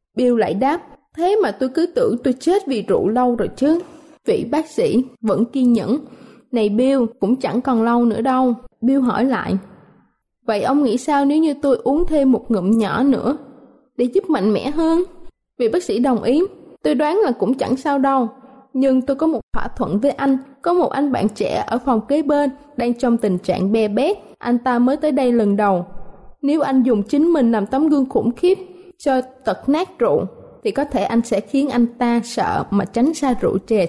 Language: Vietnamese